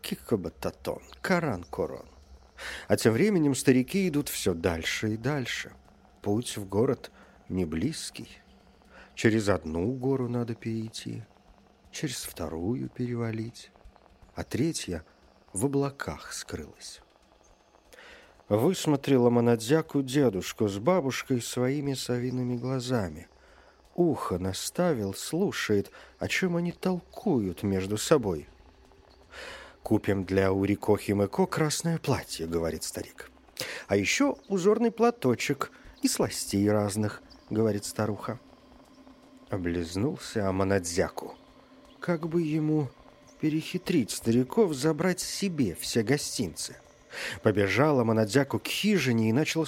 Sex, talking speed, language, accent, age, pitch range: male, 95 wpm, Russian, native, 50-69, 95-155 Hz